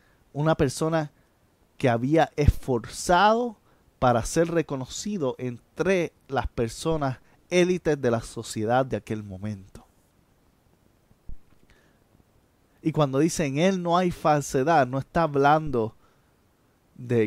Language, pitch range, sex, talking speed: Spanish, 115-150 Hz, male, 105 wpm